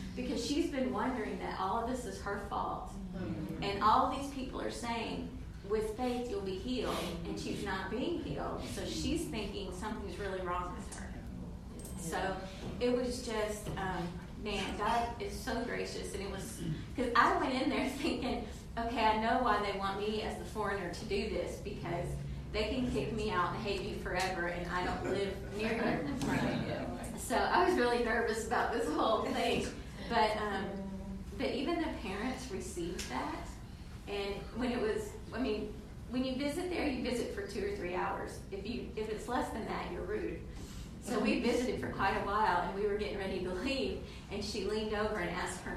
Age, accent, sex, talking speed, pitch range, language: 30-49, American, female, 195 wpm, 190-245 Hz, English